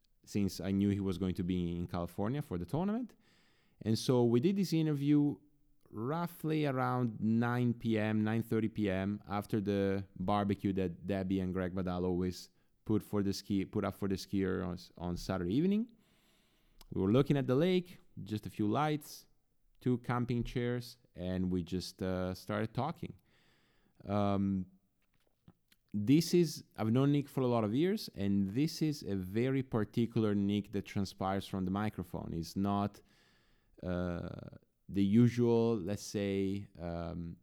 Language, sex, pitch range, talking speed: English, male, 95-120 Hz, 155 wpm